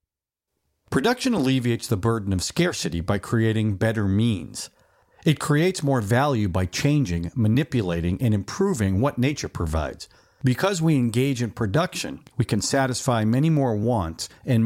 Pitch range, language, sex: 95-130 Hz, English, male